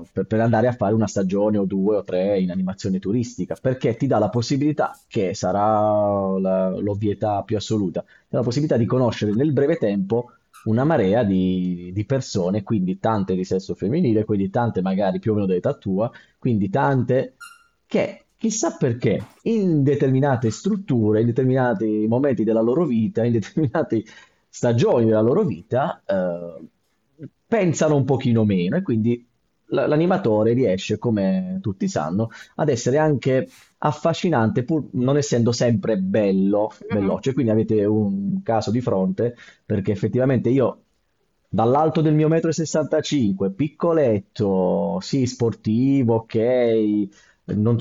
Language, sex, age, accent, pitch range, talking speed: Italian, male, 30-49, native, 105-135 Hz, 140 wpm